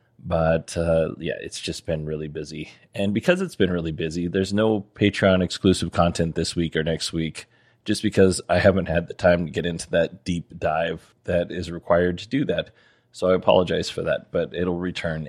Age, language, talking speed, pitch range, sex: 20-39, English, 200 wpm, 85-100 Hz, male